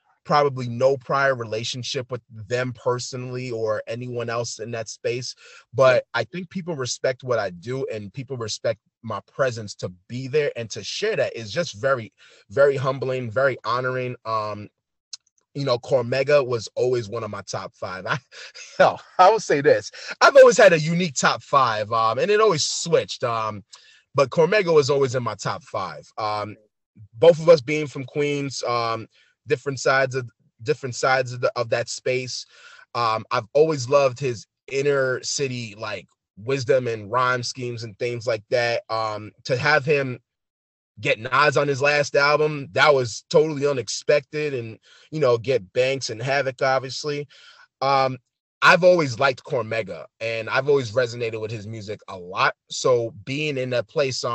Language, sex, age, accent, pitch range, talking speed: English, male, 20-39, American, 115-145 Hz, 170 wpm